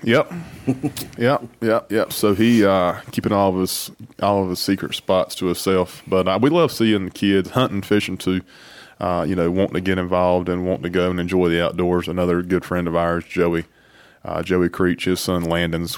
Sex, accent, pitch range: male, American, 85-95 Hz